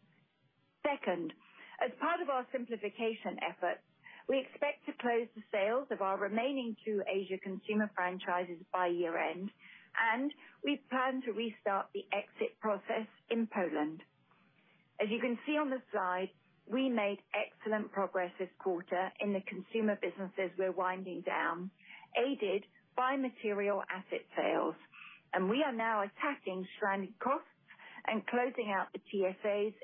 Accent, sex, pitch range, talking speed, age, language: British, female, 190-245 Hz, 140 wpm, 40-59, English